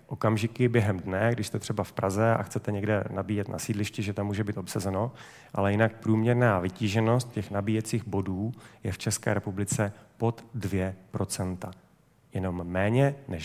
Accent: native